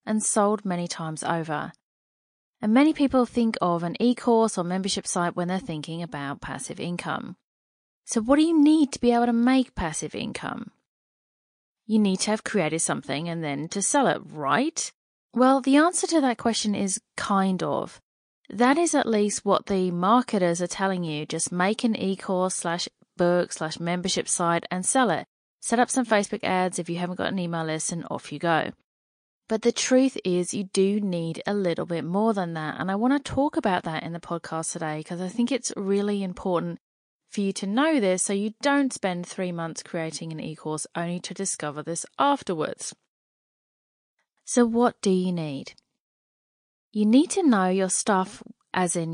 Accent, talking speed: British, 190 wpm